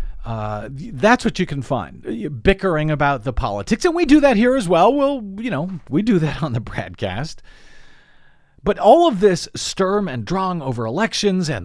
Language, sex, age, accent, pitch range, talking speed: English, male, 50-69, American, 110-175 Hz, 185 wpm